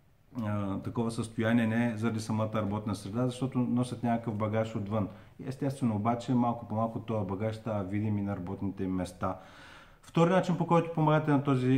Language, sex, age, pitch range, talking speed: Bulgarian, male, 40-59, 115-140 Hz, 170 wpm